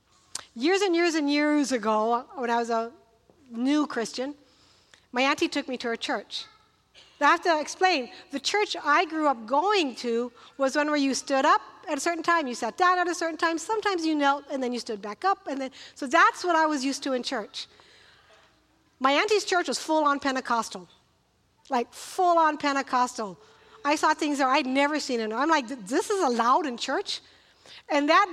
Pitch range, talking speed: 260-335 Hz, 195 wpm